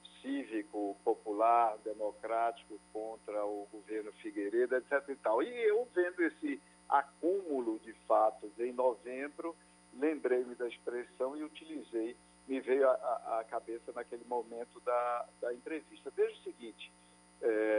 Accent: Brazilian